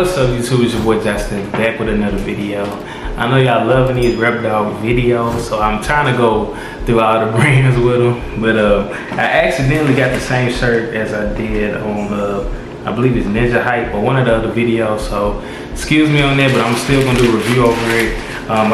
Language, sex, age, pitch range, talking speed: Vietnamese, male, 20-39, 110-125 Hz, 220 wpm